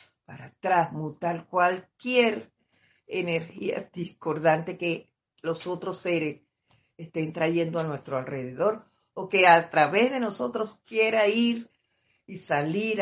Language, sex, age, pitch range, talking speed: Spanish, female, 50-69, 145-200 Hz, 110 wpm